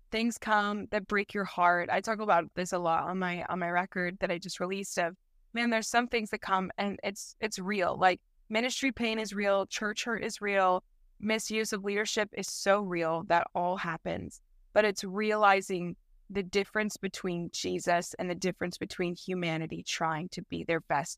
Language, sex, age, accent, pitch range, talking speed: English, female, 20-39, American, 180-210 Hz, 190 wpm